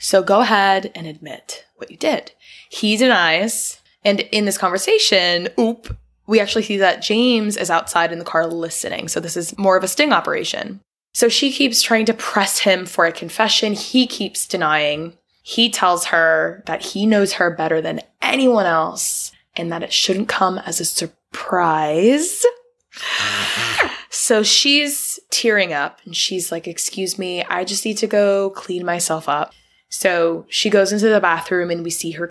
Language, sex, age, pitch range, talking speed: English, female, 20-39, 175-230 Hz, 175 wpm